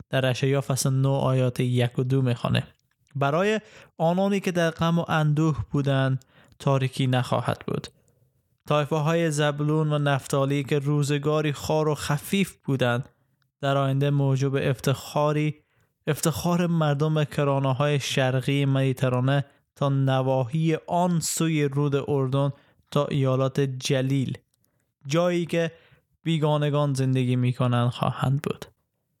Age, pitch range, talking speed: 20-39, 130-155 Hz, 120 wpm